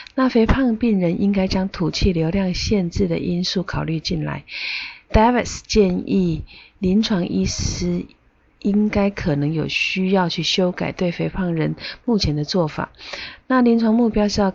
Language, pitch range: Chinese, 160-205 Hz